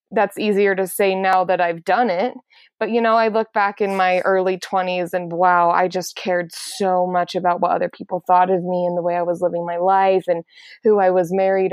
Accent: American